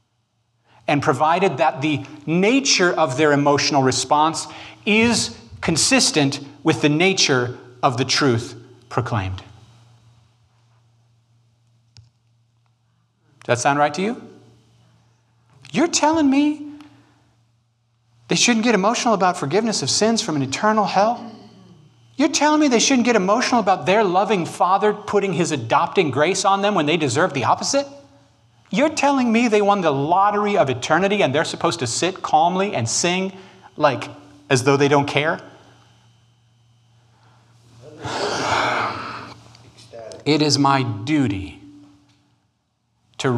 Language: English